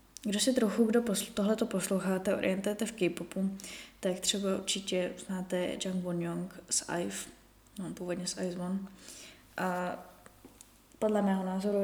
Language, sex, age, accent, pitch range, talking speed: Czech, female, 20-39, native, 185-230 Hz, 130 wpm